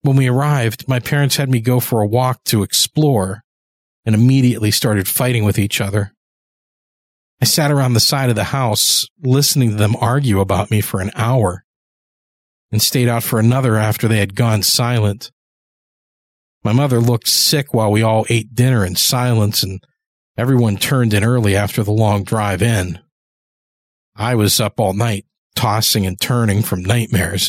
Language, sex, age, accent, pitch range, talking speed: English, male, 40-59, American, 105-135 Hz, 170 wpm